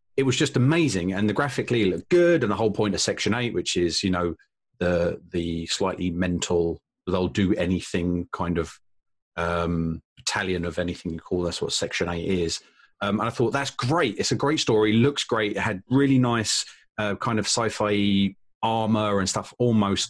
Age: 30-49